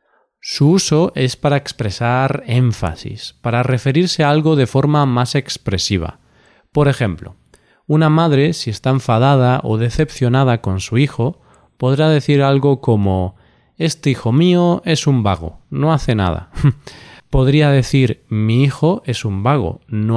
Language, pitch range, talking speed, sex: Spanish, 115-145 Hz, 140 wpm, male